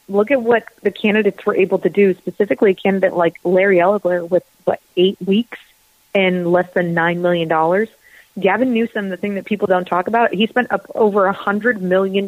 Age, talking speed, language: 30-49, 200 wpm, English